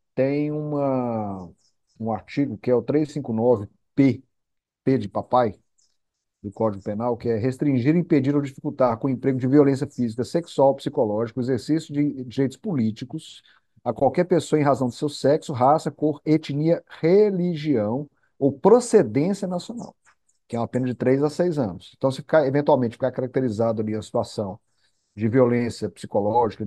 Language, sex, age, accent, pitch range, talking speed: Portuguese, male, 50-69, Brazilian, 120-150 Hz, 155 wpm